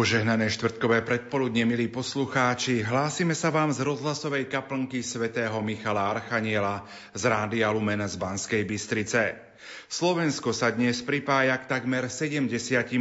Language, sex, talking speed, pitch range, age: Slovak, male, 125 wpm, 115-135 Hz, 40-59